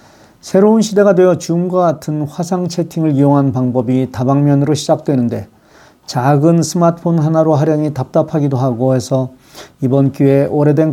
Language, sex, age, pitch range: Korean, male, 40-59, 130-170 Hz